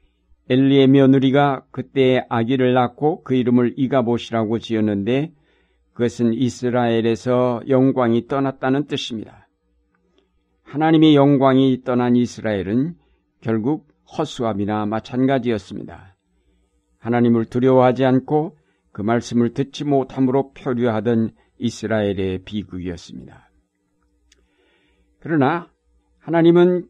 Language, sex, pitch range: Korean, male, 105-135 Hz